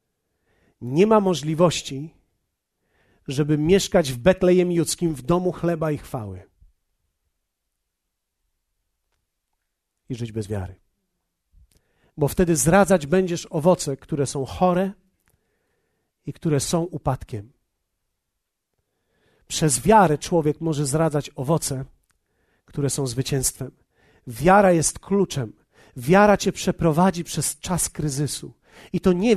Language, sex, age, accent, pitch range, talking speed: Polish, male, 40-59, native, 135-190 Hz, 100 wpm